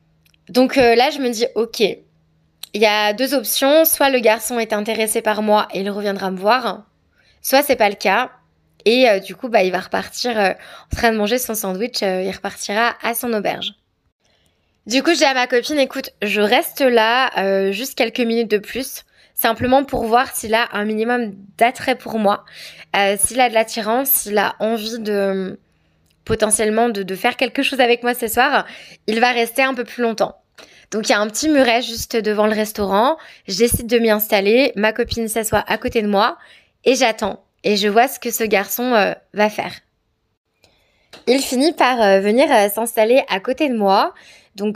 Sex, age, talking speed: female, 20-39, 200 wpm